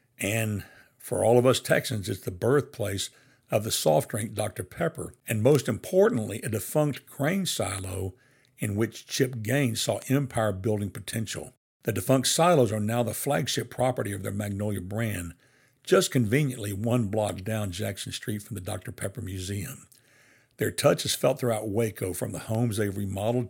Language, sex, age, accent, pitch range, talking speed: English, male, 60-79, American, 105-130 Hz, 165 wpm